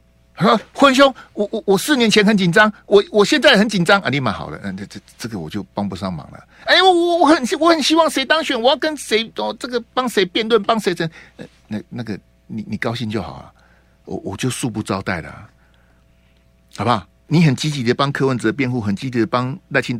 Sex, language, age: male, Chinese, 60-79